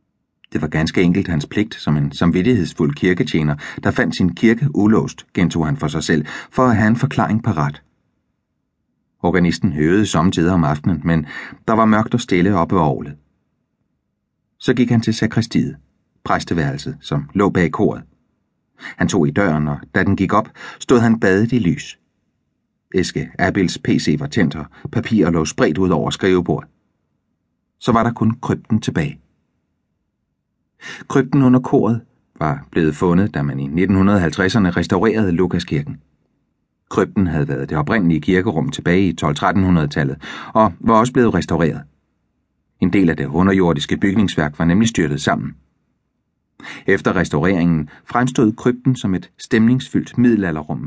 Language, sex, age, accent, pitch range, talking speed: Danish, male, 30-49, native, 80-110 Hz, 150 wpm